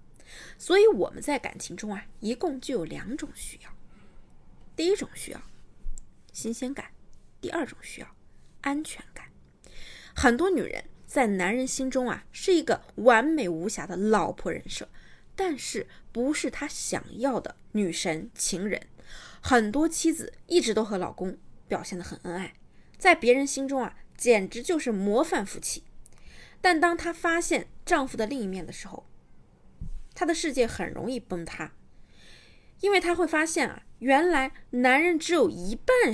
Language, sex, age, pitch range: Chinese, female, 20-39, 220-335 Hz